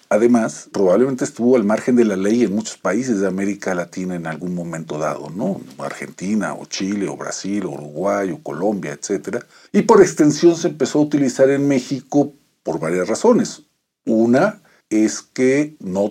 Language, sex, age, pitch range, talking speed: Spanish, male, 50-69, 95-135 Hz, 170 wpm